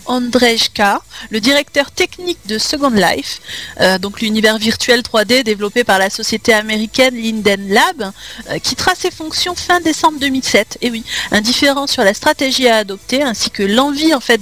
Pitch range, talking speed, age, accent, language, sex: 215-275 Hz, 165 wpm, 40-59, French, French, female